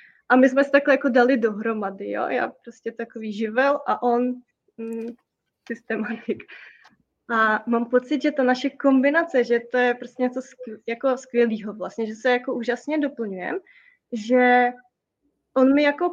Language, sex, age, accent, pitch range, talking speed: Czech, female, 20-39, native, 230-265 Hz, 150 wpm